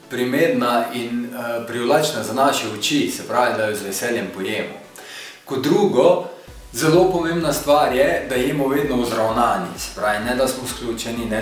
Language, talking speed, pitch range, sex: English, 165 wpm, 110-130 Hz, male